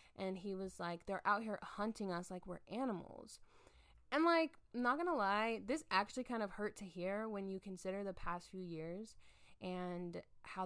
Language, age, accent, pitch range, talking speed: English, 10-29, American, 185-235 Hz, 190 wpm